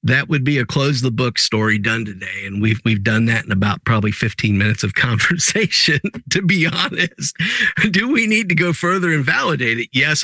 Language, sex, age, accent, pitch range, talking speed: English, male, 50-69, American, 120-170 Hz, 205 wpm